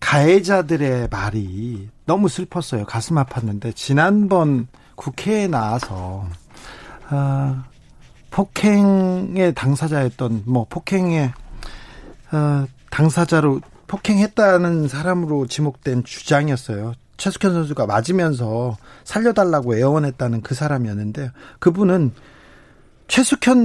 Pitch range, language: 125-180 Hz, Korean